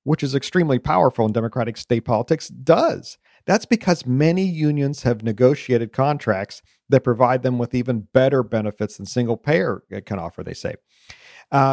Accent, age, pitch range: American, 40-59, 110-150 Hz